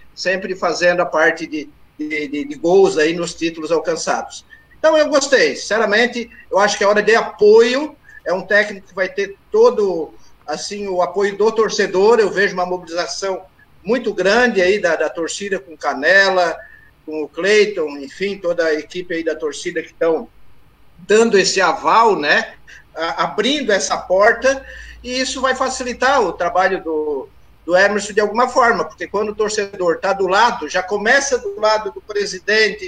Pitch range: 175-245 Hz